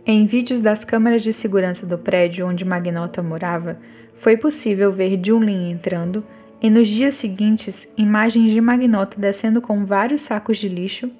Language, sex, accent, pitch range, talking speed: Portuguese, female, Brazilian, 190-235 Hz, 155 wpm